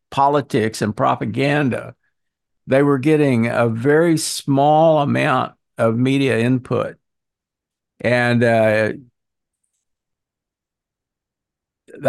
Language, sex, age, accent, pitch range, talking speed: English, male, 60-79, American, 115-150 Hz, 75 wpm